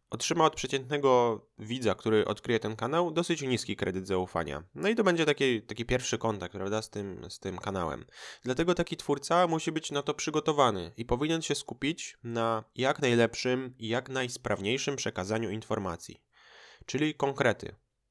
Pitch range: 110-140 Hz